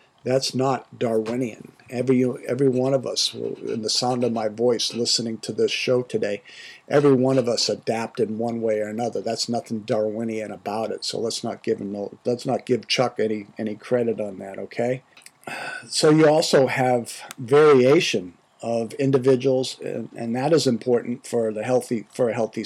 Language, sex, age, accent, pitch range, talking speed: English, male, 50-69, American, 115-135 Hz, 180 wpm